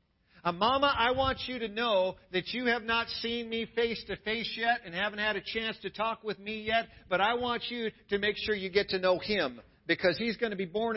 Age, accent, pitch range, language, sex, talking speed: 50-69, American, 130-210 Hz, English, male, 240 wpm